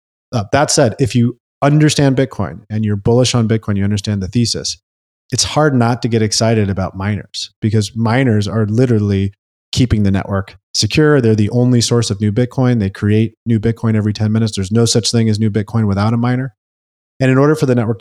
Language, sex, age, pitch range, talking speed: English, male, 30-49, 100-120 Hz, 205 wpm